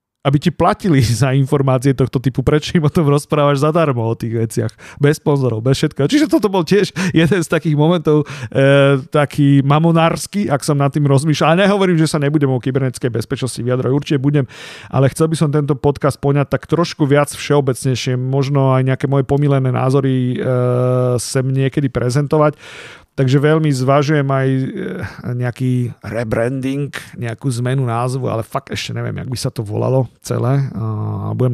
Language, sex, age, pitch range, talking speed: Slovak, male, 40-59, 120-145 Hz, 165 wpm